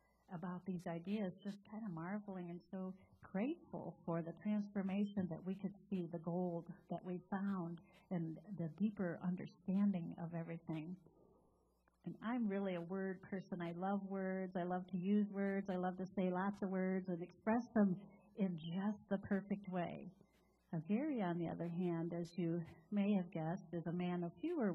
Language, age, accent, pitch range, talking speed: English, 50-69, American, 175-205 Hz, 175 wpm